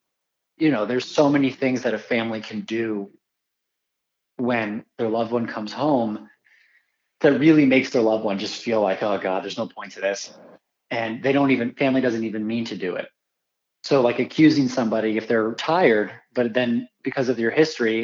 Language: English